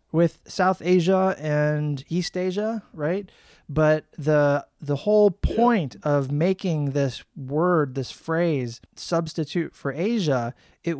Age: 30-49